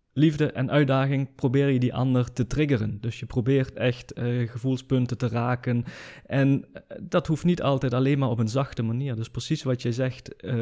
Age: 20-39